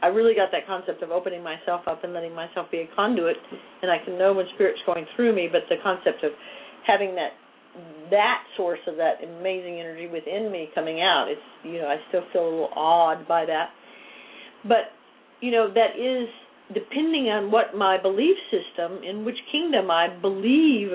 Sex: female